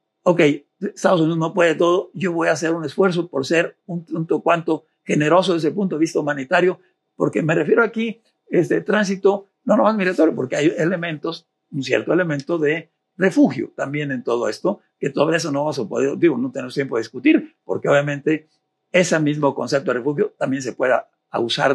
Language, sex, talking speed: Spanish, male, 190 wpm